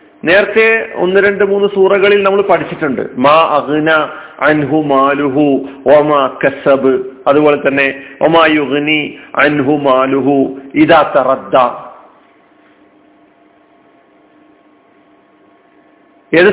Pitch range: 155-215 Hz